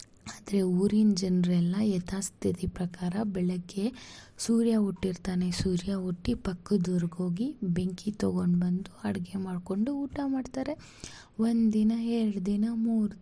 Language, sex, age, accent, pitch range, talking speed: Kannada, female, 20-39, native, 185-230 Hz, 105 wpm